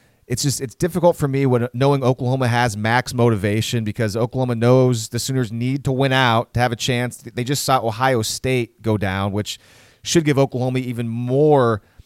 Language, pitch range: English, 115-135 Hz